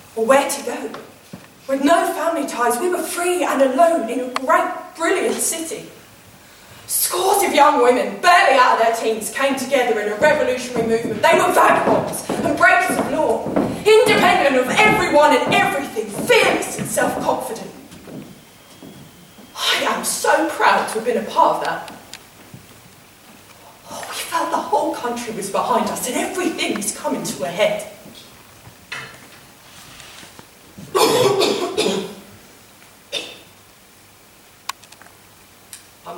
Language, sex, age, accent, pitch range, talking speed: English, female, 20-39, British, 215-315 Hz, 125 wpm